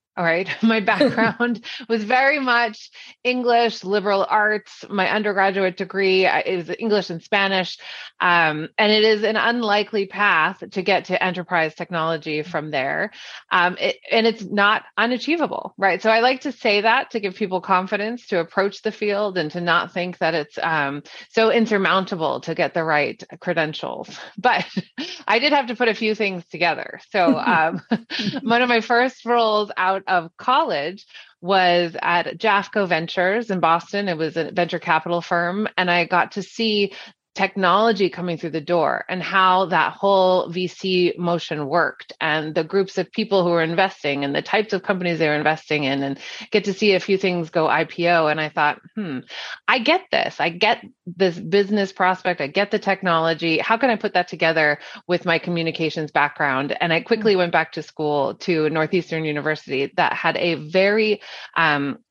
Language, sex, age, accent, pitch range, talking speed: English, female, 30-49, American, 165-215 Hz, 175 wpm